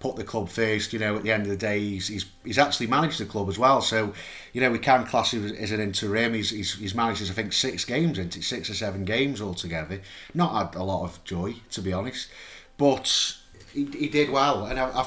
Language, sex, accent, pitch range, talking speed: English, male, British, 105-135 Hz, 260 wpm